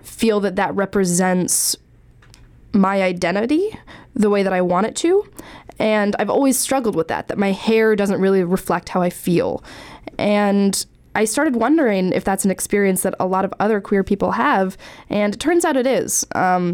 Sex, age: female, 10-29